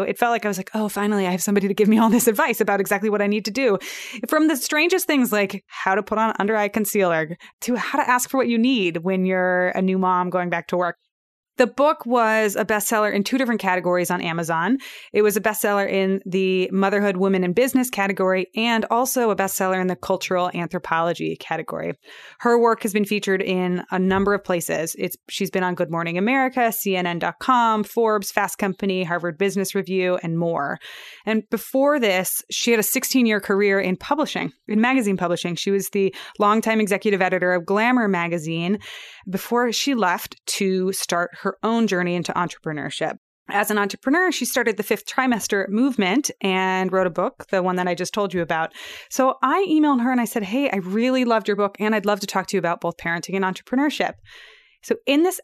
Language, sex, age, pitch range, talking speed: English, female, 20-39, 185-230 Hz, 205 wpm